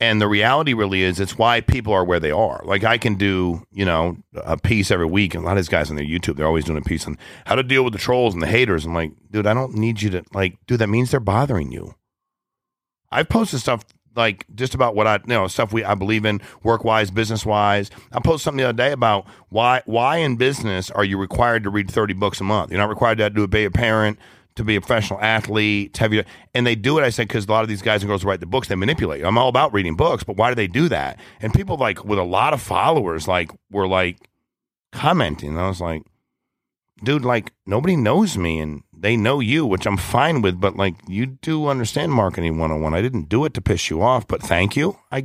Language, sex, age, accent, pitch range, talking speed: English, male, 40-59, American, 95-120 Hz, 260 wpm